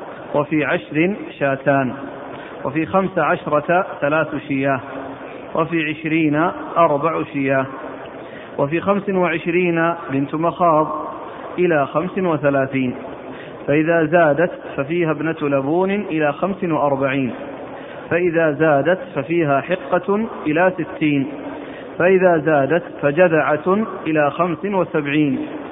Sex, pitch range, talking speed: male, 150-180 Hz, 95 wpm